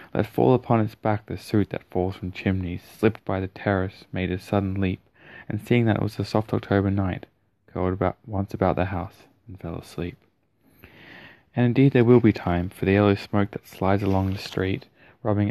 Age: 20-39